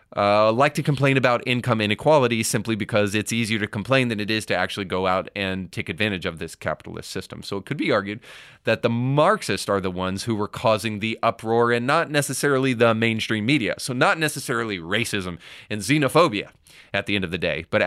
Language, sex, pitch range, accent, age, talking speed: English, male, 95-120 Hz, American, 30-49, 210 wpm